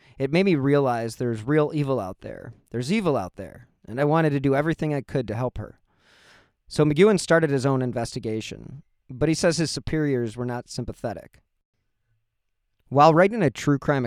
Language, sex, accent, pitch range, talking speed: English, male, American, 110-145 Hz, 185 wpm